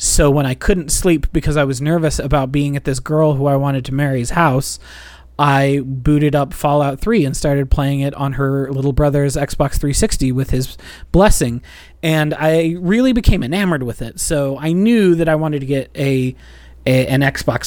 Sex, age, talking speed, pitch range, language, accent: male, 30-49, 195 wpm, 130-165 Hz, English, American